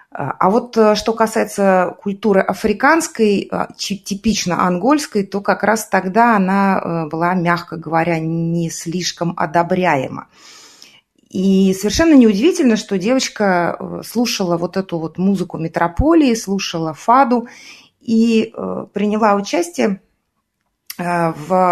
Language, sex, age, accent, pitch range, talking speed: Russian, female, 30-49, native, 170-230 Hz, 100 wpm